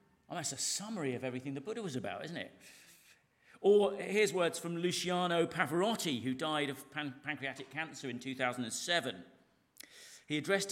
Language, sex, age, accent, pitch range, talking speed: English, male, 40-59, British, 130-180 Hz, 145 wpm